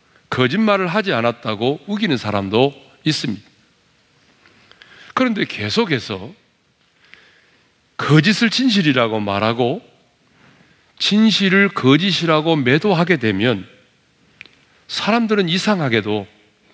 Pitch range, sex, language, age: 110-180 Hz, male, Korean, 40-59